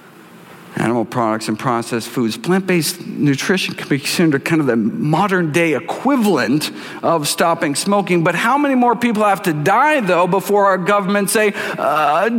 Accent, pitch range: American, 145-220 Hz